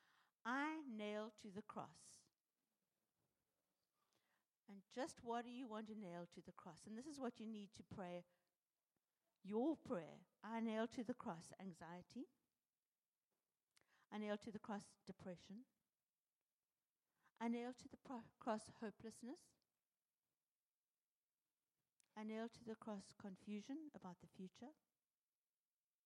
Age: 60-79